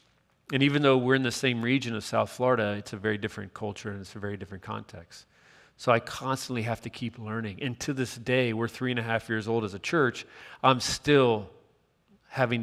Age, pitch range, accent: 40-59, 110-130 Hz, American